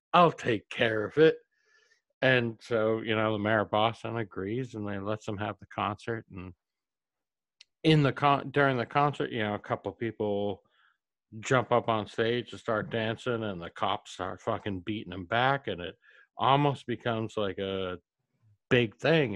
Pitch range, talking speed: 105-140 Hz, 175 wpm